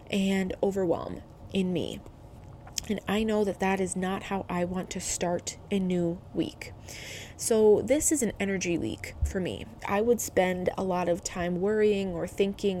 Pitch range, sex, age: 185-235 Hz, female, 20-39